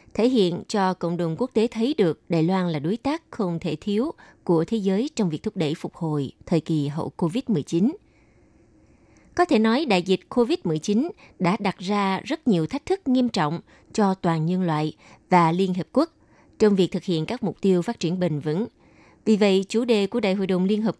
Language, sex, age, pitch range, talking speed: Vietnamese, female, 20-39, 170-220 Hz, 210 wpm